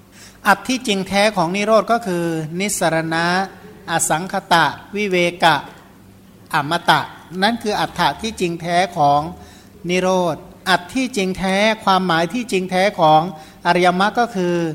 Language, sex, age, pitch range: Thai, male, 60-79, 165-200 Hz